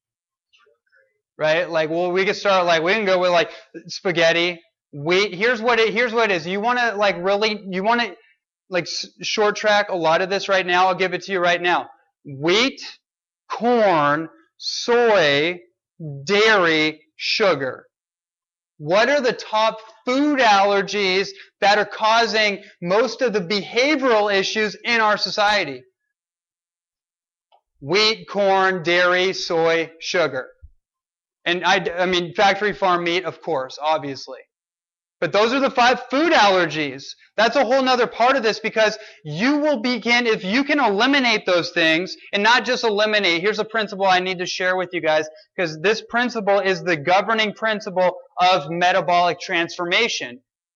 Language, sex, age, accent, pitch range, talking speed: English, male, 20-39, American, 175-220 Hz, 150 wpm